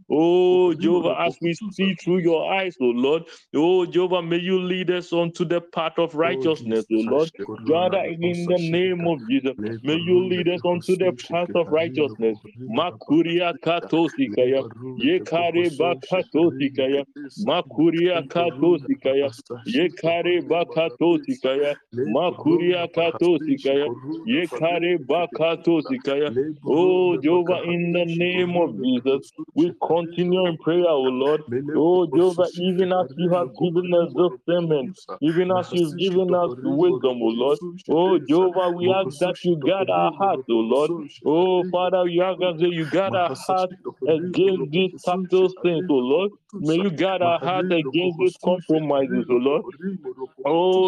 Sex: male